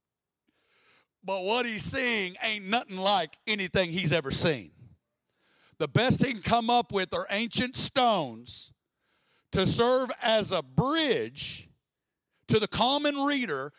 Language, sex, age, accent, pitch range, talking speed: English, male, 60-79, American, 185-235 Hz, 130 wpm